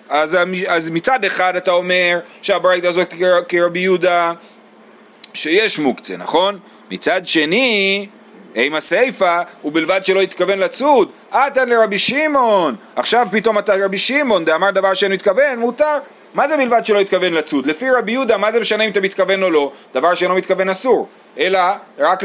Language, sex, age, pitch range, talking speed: Hebrew, male, 40-59, 165-225 Hz, 145 wpm